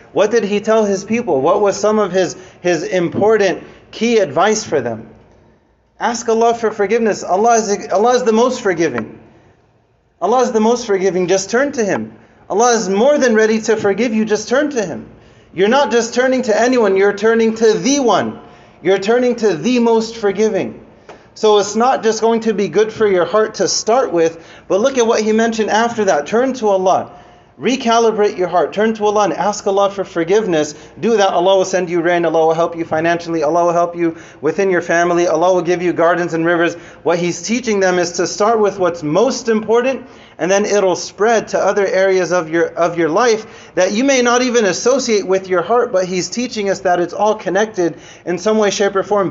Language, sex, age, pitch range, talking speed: English, male, 30-49, 175-225 Hz, 210 wpm